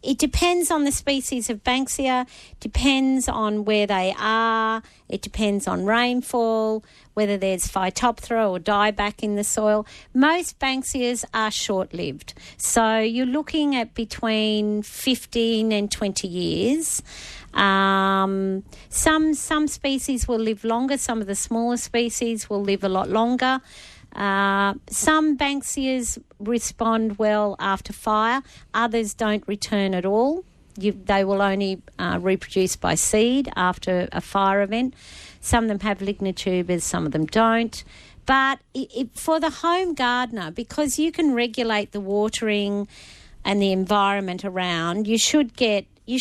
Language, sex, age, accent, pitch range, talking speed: English, female, 50-69, Australian, 200-255 Hz, 140 wpm